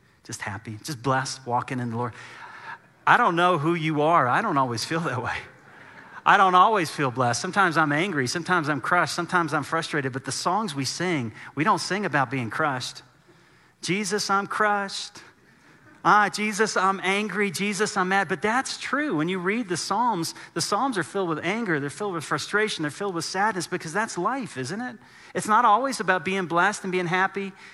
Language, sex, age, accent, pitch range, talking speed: English, male, 40-59, American, 145-195 Hz, 195 wpm